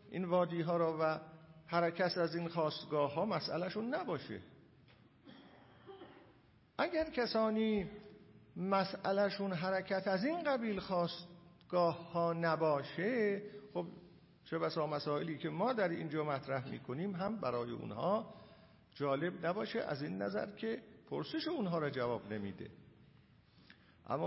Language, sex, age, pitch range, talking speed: Persian, male, 50-69, 145-200 Hz, 115 wpm